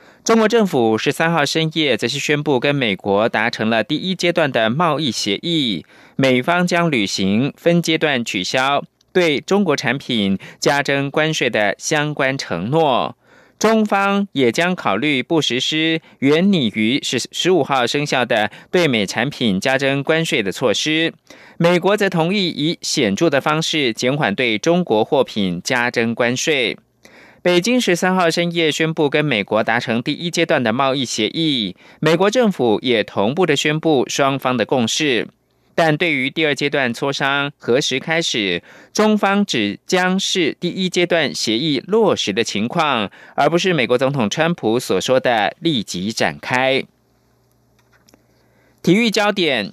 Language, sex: German, male